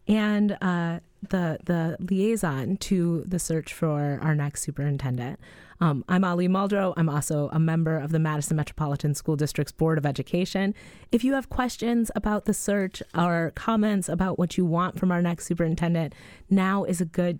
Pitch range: 150-190 Hz